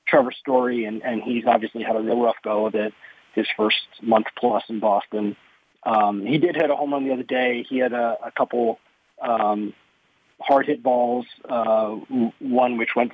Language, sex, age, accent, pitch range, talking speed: English, male, 40-59, American, 115-140 Hz, 190 wpm